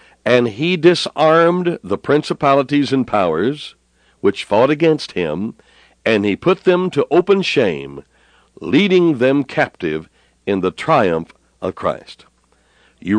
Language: English